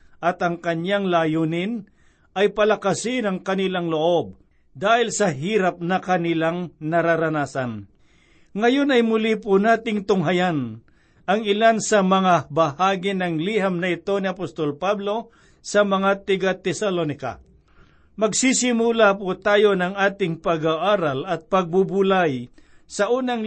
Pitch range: 165-200 Hz